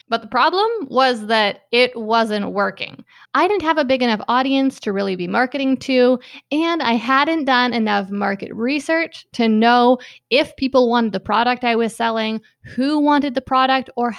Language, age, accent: English, 20-39, American